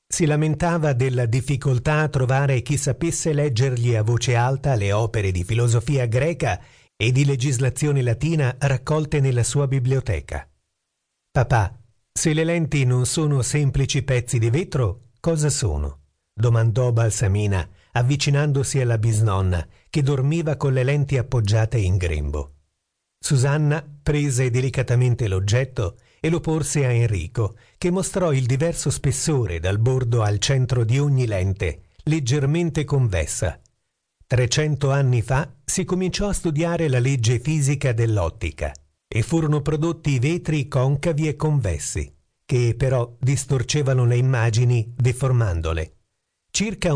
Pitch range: 115-145 Hz